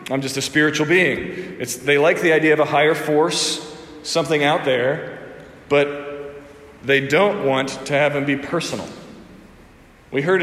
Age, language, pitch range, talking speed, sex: 40-59, English, 135-160 Hz, 155 wpm, male